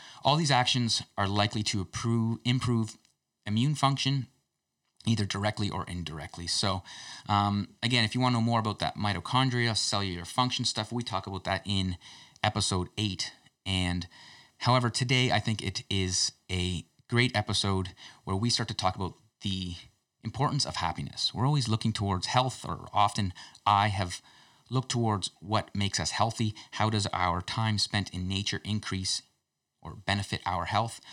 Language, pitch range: English, 95-120 Hz